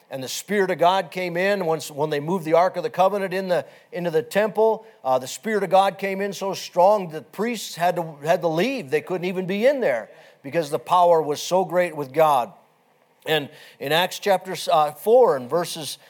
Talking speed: 220 wpm